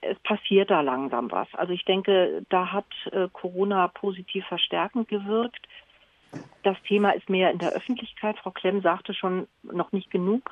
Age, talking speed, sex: 40-59, 160 wpm, female